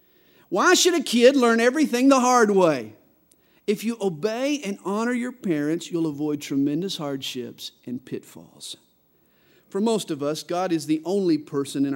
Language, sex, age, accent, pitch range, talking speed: English, male, 50-69, American, 150-235 Hz, 160 wpm